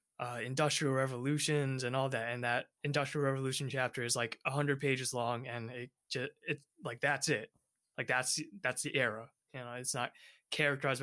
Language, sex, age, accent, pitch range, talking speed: English, male, 20-39, American, 125-150 Hz, 185 wpm